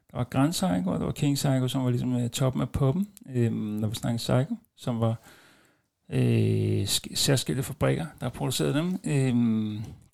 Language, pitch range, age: Danish, 120-140 Hz, 60-79